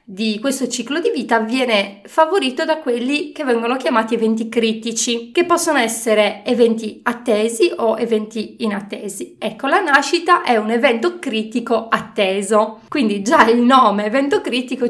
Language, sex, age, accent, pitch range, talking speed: Italian, female, 30-49, native, 215-280 Hz, 145 wpm